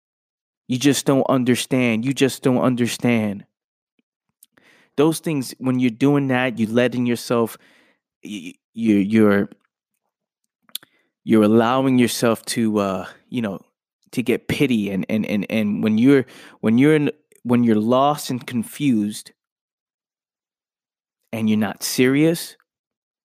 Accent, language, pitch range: American, English, 110-140 Hz